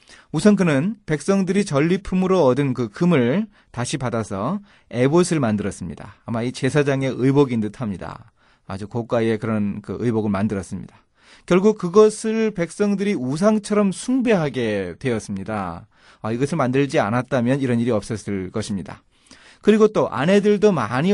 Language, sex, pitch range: Korean, male, 110-170 Hz